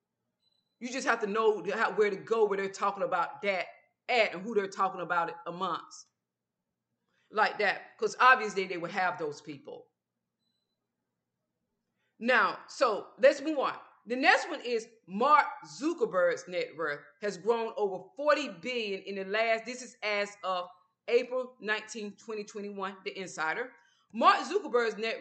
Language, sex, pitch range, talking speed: English, female, 190-250 Hz, 150 wpm